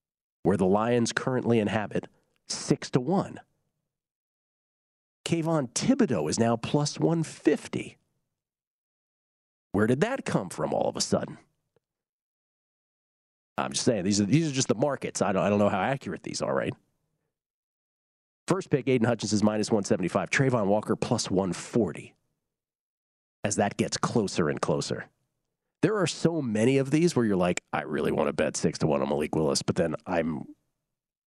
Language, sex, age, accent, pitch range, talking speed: English, male, 40-59, American, 105-140 Hz, 165 wpm